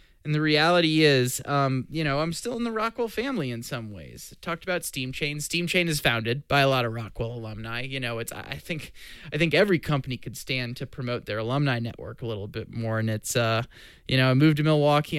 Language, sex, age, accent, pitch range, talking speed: English, male, 20-39, American, 115-145 Hz, 235 wpm